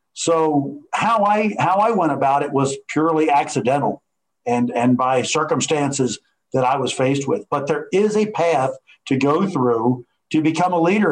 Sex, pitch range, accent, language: male, 135-165 Hz, American, English